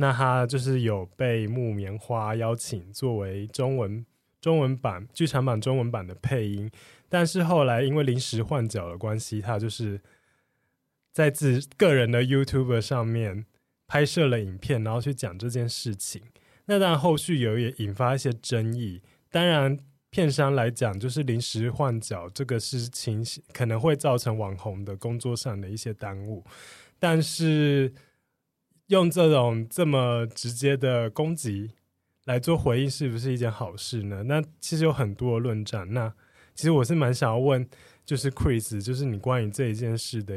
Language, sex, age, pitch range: Chinese, male, 20-39, 110-140 Hz